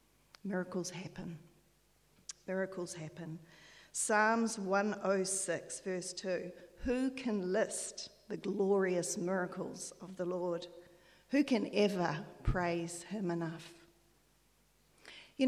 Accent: Australian